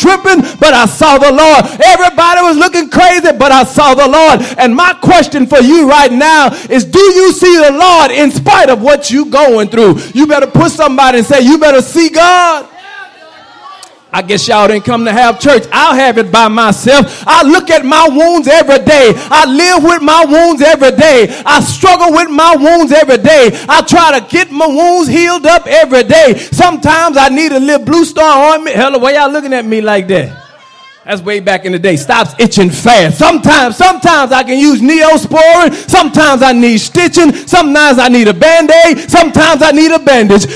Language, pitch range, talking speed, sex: English, 265-335 Hz, 200 wpm, male